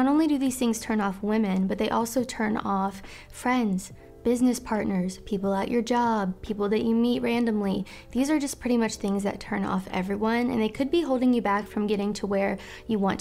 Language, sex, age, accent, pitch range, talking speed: English, female, 20-39, American, 200-235 Hz, 220 wpm